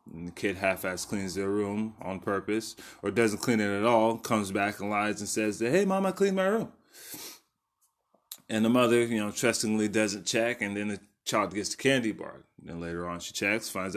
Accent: American